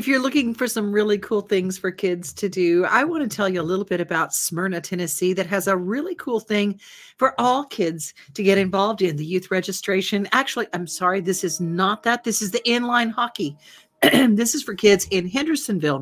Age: 50-69